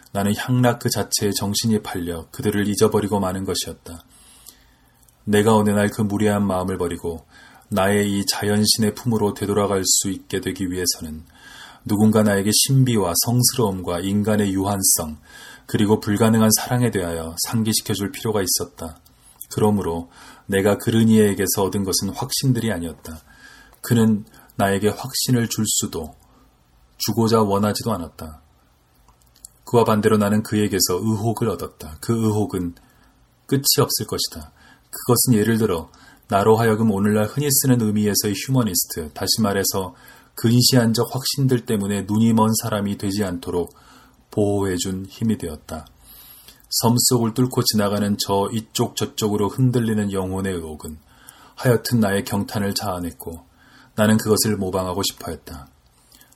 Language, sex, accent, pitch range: Korean, male, native, 95-110 Hz